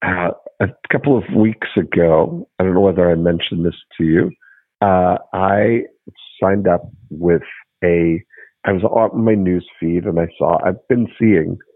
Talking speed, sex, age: 170 wpm, male, 50-69